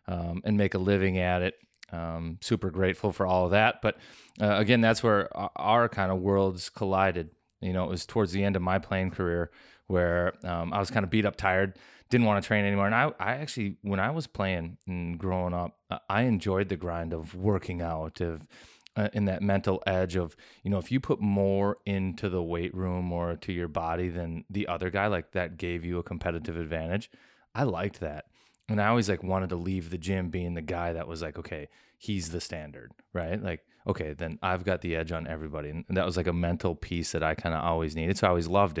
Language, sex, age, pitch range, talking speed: English, male, 20-39, 85-100 Hz, 230 wpm